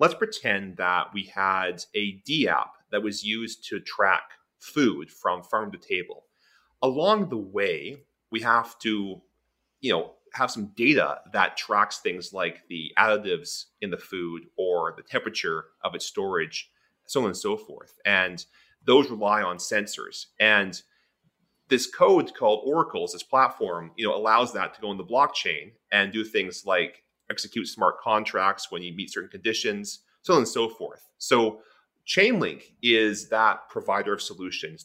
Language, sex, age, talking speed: English, male, 30-49, 160 wpm